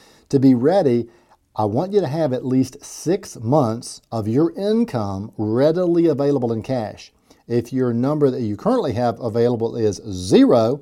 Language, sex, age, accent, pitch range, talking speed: English, male, 50-69, American, 110-140 Hz, 160 wpm